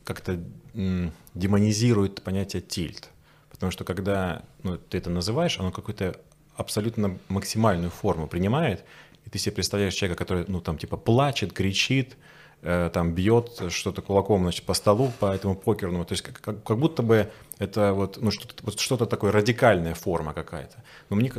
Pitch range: 95-120 Hz